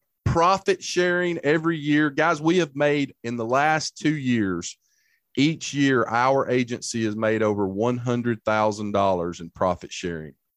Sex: male